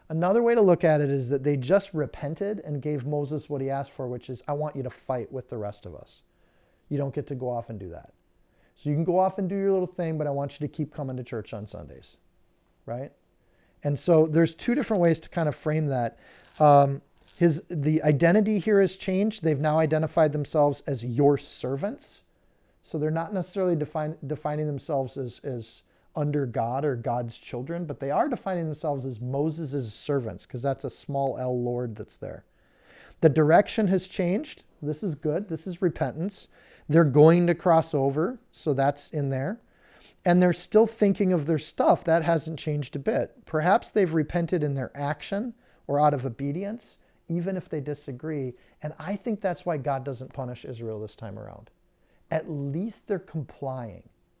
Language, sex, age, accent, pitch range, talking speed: English, male, 40-59, American, 135-170 Hz, 195 wpm